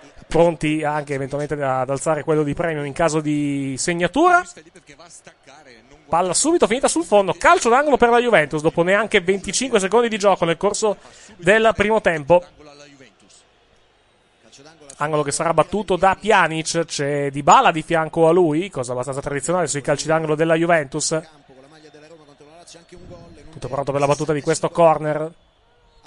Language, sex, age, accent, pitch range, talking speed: Italian, male, 30-49, native, 145-180 Hz, 145 wpm